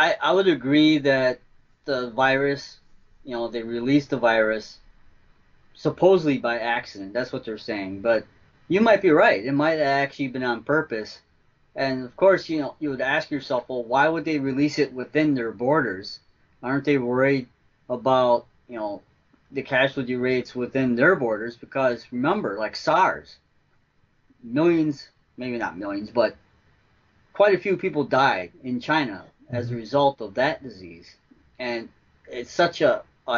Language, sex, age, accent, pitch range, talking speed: English, male, 30-49, American, 125-155 Hz, 160 wpm